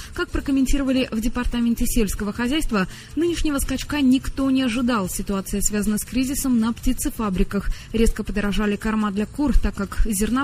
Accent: native